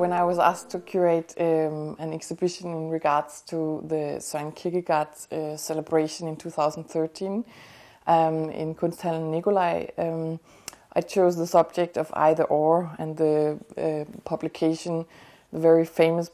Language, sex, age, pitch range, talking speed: Danish, female, 20-39, 160-180 Hz, 140 wpm